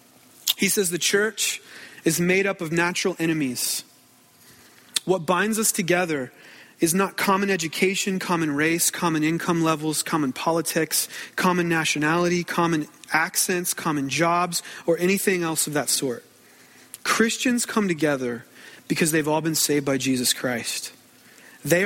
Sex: male